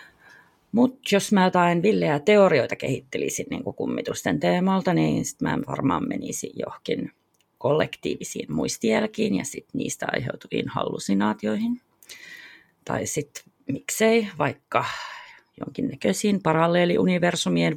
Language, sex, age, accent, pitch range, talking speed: Finnish, female, 30-49, native, 130-195 Hz, 100 wpm